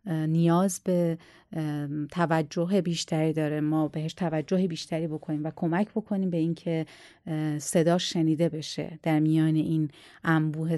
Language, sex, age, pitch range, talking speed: Persian, female, 30-49, 160-195 Hz, 125 wpm